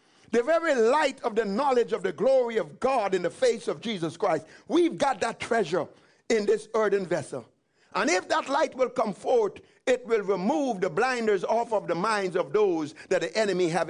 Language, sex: English, male